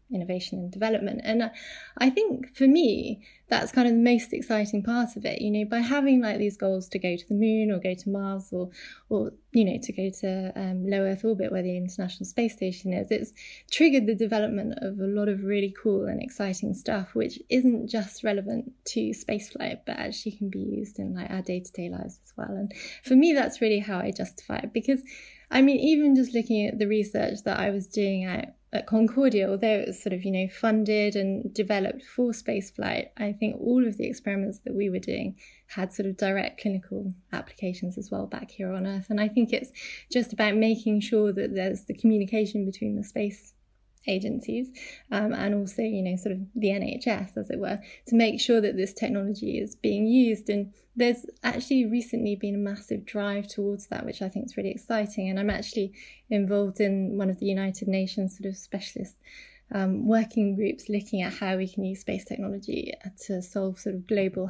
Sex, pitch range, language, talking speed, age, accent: female, 195-230 Hz, English, 205 wpm, 20-39, British